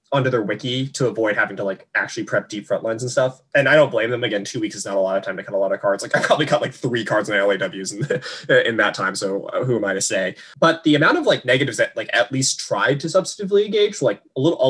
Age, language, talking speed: 20-39, English, 300 wpm